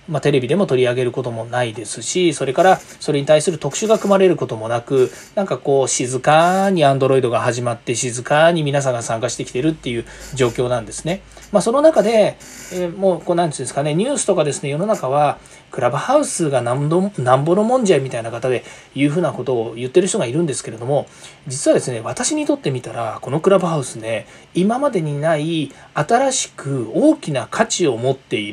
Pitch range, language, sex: 130-195 Hz, Japanese, male